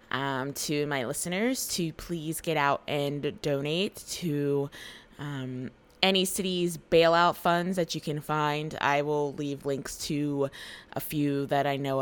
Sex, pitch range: female, 140-160 Hz